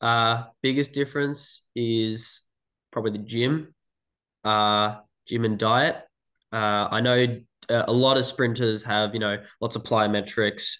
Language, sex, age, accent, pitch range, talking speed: English, male, 10-29, Australian, 100-115 Hz, 135 wpm